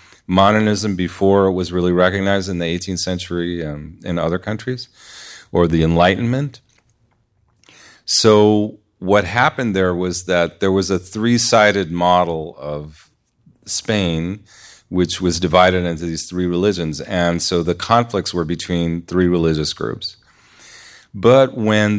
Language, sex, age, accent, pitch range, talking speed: English, male, 40-59, American, 85-100 Hz, 135 wpm